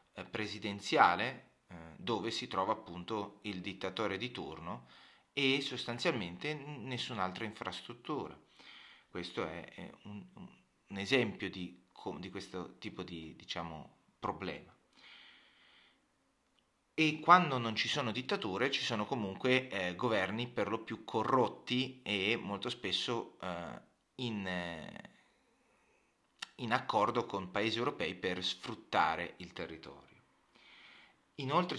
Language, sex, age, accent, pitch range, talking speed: Italian, male, 30-49, native, 95-120 Hz, 110 wpm